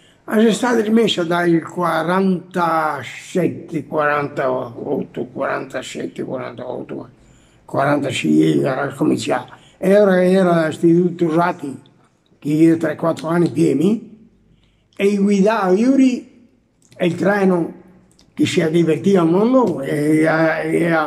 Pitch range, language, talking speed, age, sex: 155-185 Hz, Italian, 95 wpm, 60-79, male